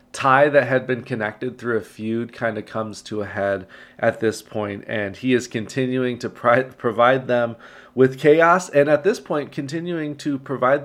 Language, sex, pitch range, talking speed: English, male, 110-135 Hz, 185 wpm